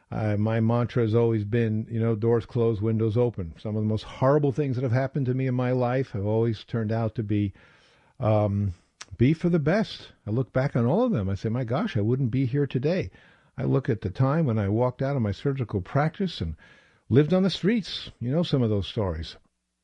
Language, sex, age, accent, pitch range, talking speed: English, male, 50-69, American, 110-145 Hz, 235 wpm